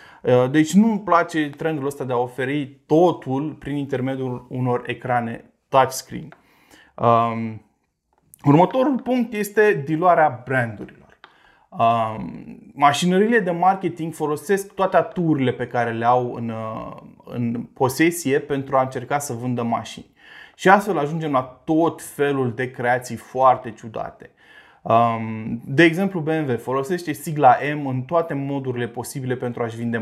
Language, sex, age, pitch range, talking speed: Romanian, male, 20-39, 125-155 Hz, 125 wpm